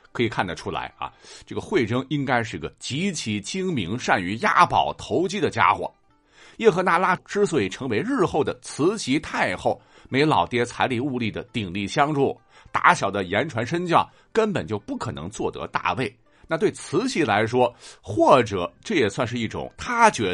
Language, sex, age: Chinese, male, 50-69